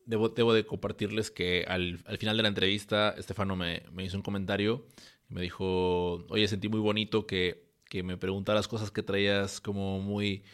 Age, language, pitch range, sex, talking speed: 20-39, Spanish, 100-110 Hz, male, 180 wpm